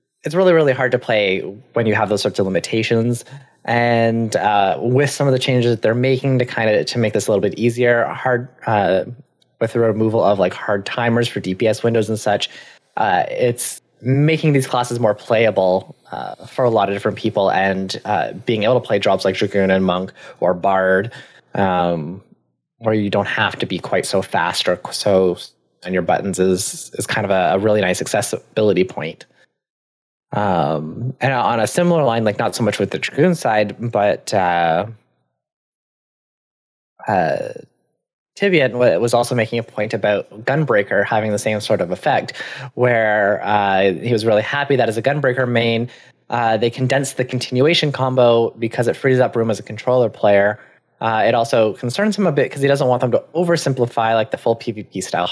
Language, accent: English, American